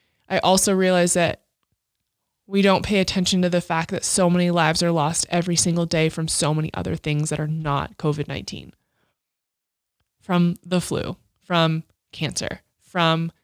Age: 20-39